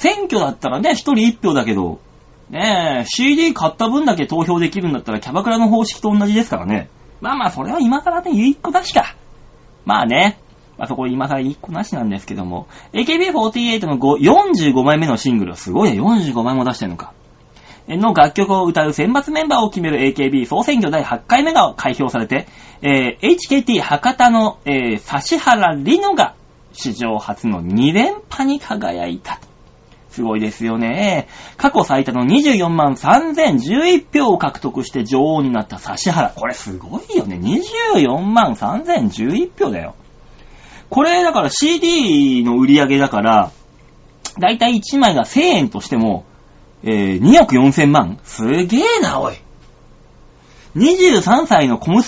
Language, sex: Japanese, male